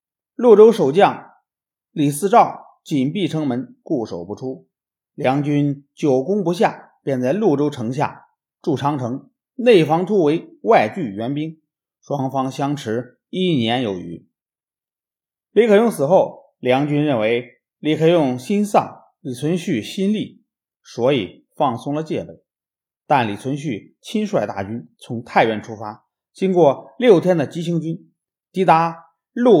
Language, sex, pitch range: Chinese, male, 130-180 Hz